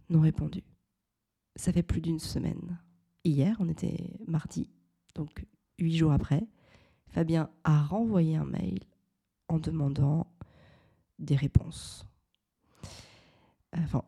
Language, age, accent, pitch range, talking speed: French, 40-59, French, 145-175 Hz, 105 wpm